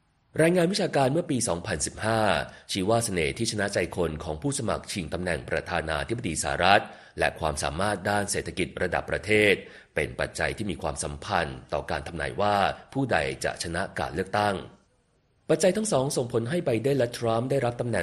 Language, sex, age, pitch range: Thai, male, 30-49, 85-125 Hz